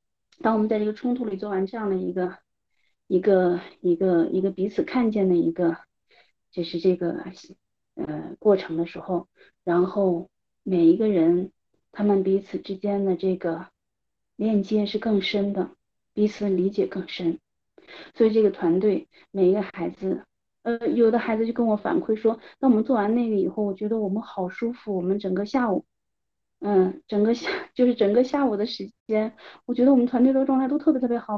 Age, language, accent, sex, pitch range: 30-49, Chinese, native, female, 185-230 Hz